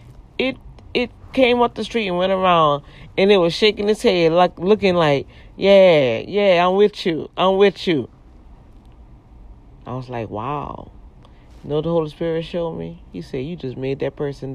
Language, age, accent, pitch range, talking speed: English, 40-59, American, 135-200 Hz, 180 wpm